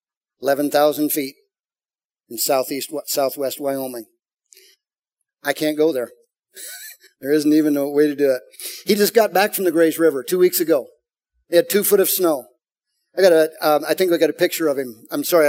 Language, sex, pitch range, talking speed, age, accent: English, male, 160-240 Hz, 190 wpm, 40-59, American